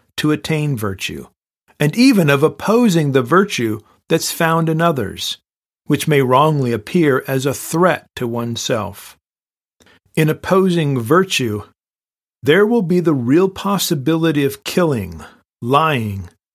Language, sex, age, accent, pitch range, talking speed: English, male, 50-69, American, 125-175 Hz, 125 wpm